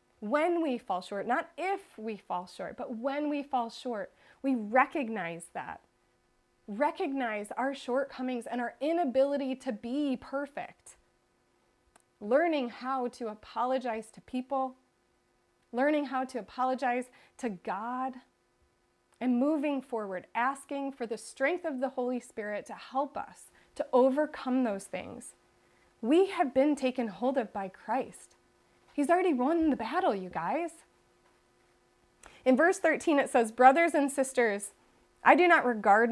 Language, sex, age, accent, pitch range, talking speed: English, female, 30-49, American, 225-285 Hz, 140 wpm